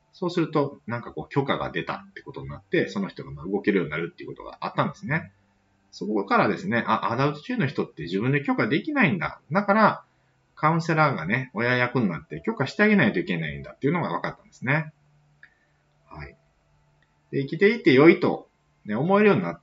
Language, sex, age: Japanese, male, 30-49